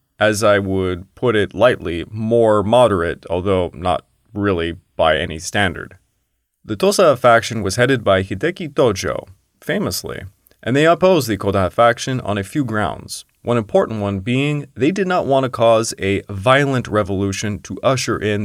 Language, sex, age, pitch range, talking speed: English, male, 30-49, 95-130 Hz, 160 wpm